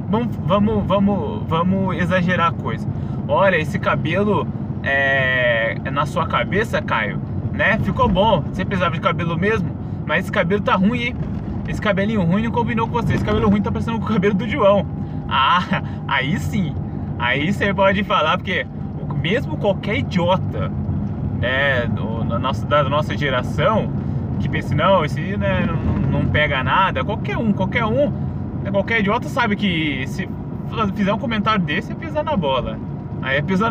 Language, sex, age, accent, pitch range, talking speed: Portuguese, male, 20-39, Brazilian, 145-200 Hz, 165 wpm